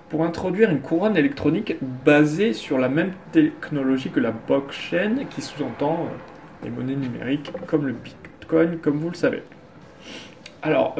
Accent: French